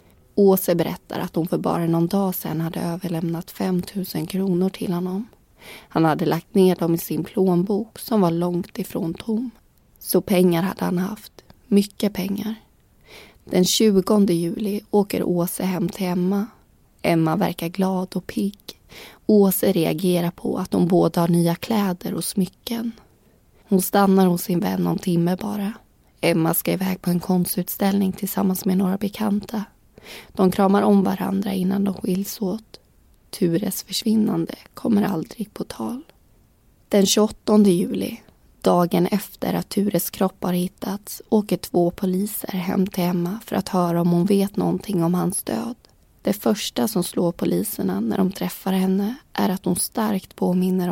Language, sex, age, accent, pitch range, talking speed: Swedish, female, 20-39, native, 175-205 Hz, 155 wpm